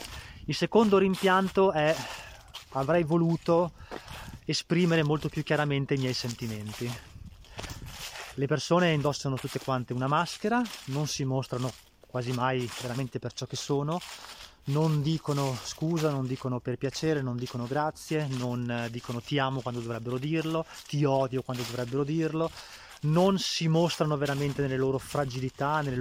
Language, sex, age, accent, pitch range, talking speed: Italian, male, 20-39, native, 125-155 Hz, 140 wpm